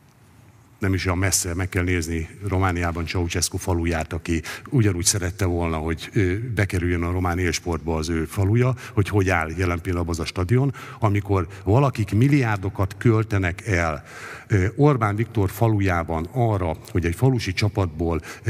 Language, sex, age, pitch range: Hungarian, male, 60-79, 90-110 Hz